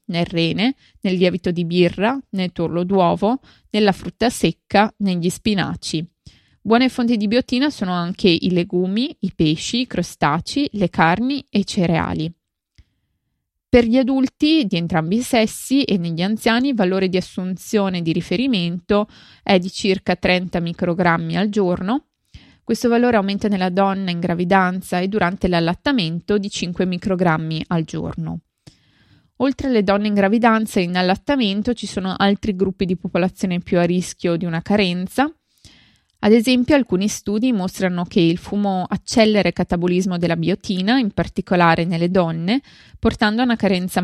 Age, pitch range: 20-39, 180-225 Hz